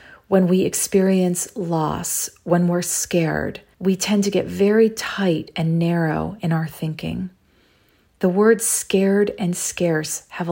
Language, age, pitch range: English, 40-59, 160-190 Hz